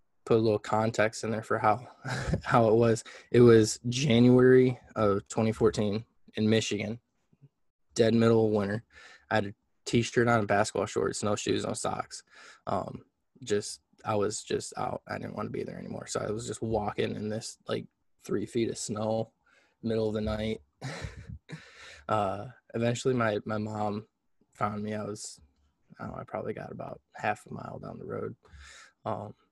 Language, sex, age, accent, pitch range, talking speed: English, male, 20-39, American, 105-115 Hz, 165 wpm